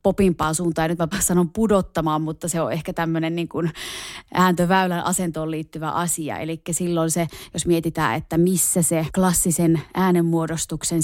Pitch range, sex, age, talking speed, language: 160-185 Hz, female, 20-39, 145 wpm, Finnish